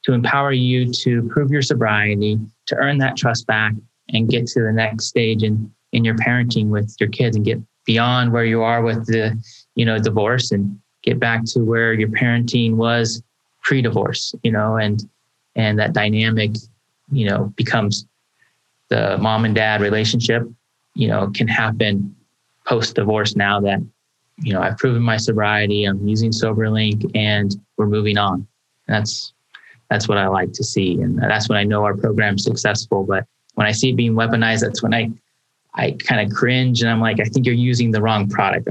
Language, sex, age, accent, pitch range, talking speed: English, male, 20-39, American, 105-115 Hz, 185 wpm